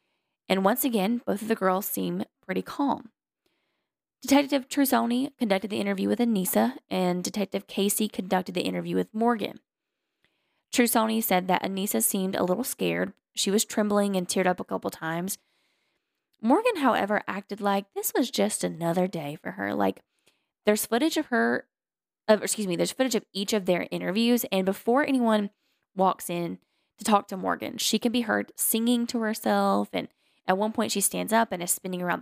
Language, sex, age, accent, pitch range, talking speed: English, female, 10-29, American, 190-240 Hz, 175 wpm